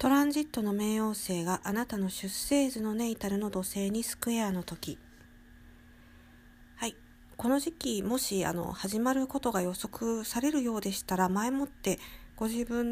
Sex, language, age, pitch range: female, Japanese, 50-69, 175-235 Hz